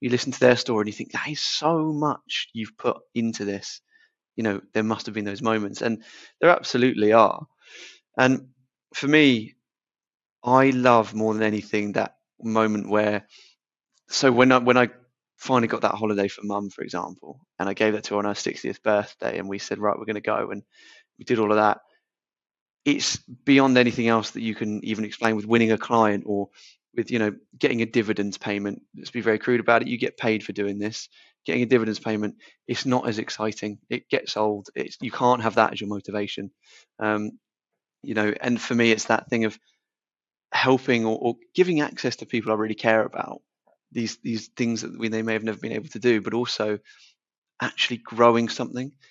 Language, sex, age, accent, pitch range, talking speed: English, male, 20-39, British, 105-125 Hz, 205 wpm